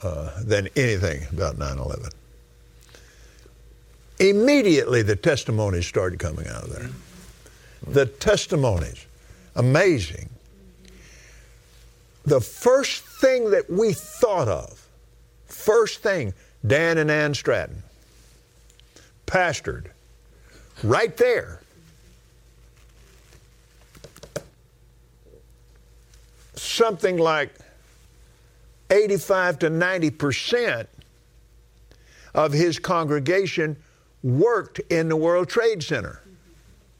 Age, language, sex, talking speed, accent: 50-69, English, male, 75 wpm, American